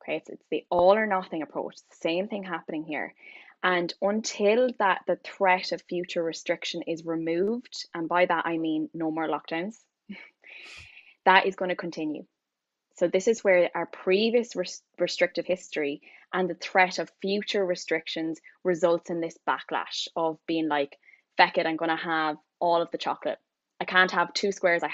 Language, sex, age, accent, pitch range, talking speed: English, female, 10-29, Irish, 165-190 Hz, 175 wpm